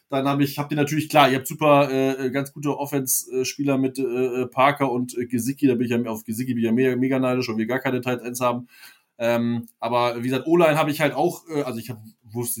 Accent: German